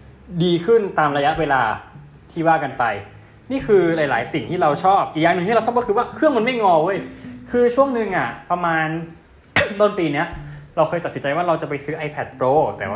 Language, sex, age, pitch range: Thai, male, 20-39, 140-185 Hz